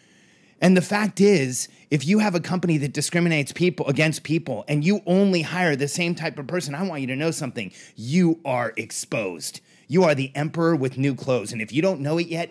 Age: 30-49